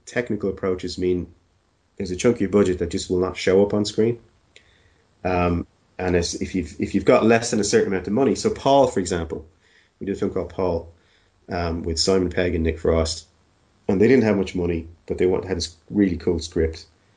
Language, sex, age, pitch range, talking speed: English, male, 30-49, 90-105 Hz, 220 wpm